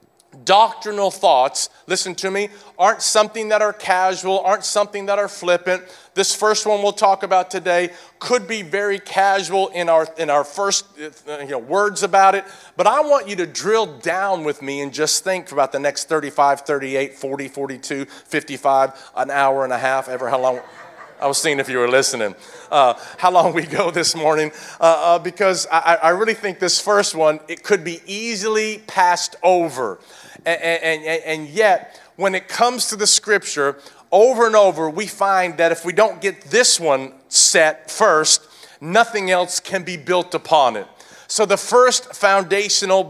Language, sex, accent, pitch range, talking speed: English, male, American, 155-200 Hz, 180 wpm